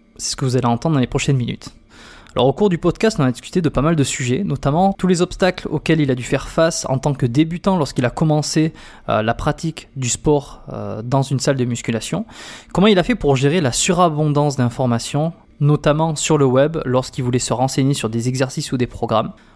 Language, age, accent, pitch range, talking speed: French, 20-39, French, 130-160 Hz, 225 wpm